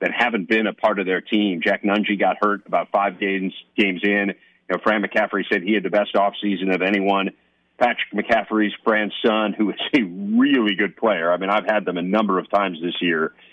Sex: male